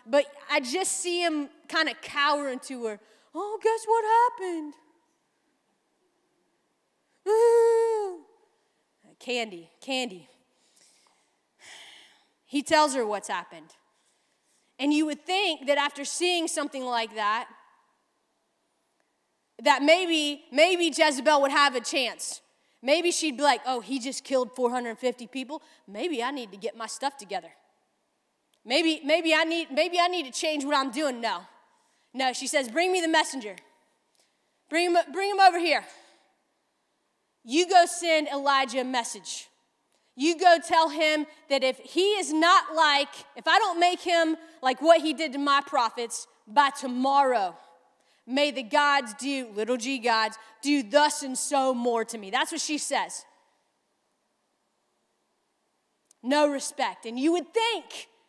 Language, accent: English, American